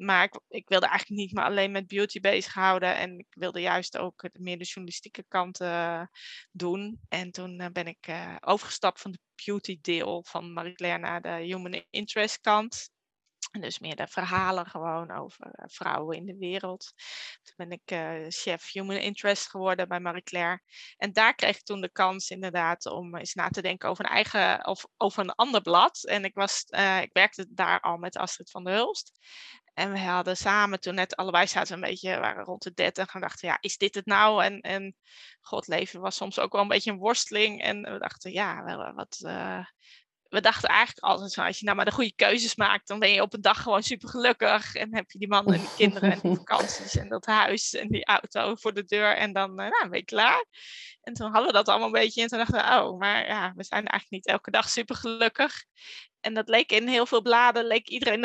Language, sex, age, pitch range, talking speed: Dutch, female, 20-39, 180-215 Hz, 215 wpm